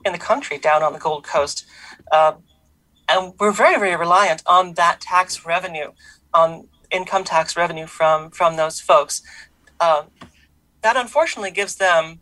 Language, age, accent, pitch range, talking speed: English, 40-59, American, 160-195 Hz, 150 wpm